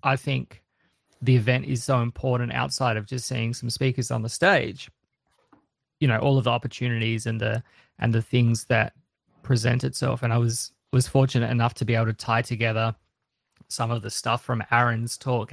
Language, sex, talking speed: English, male, 190 wpm